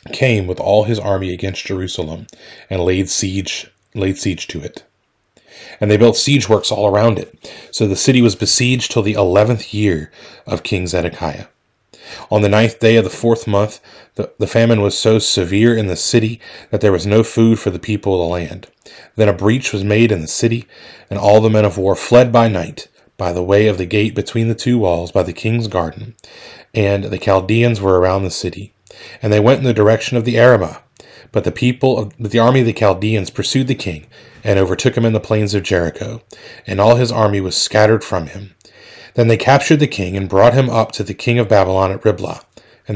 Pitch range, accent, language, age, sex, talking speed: 95-115 Hz, American, English, 30-49, male, 210 wpm